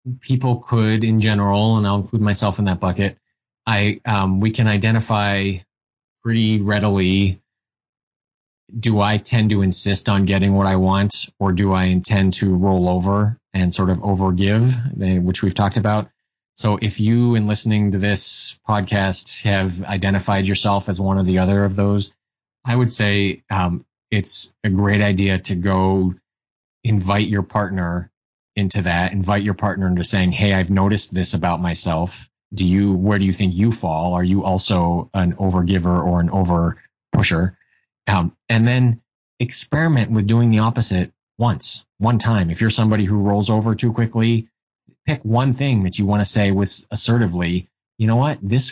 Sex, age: male, 20-39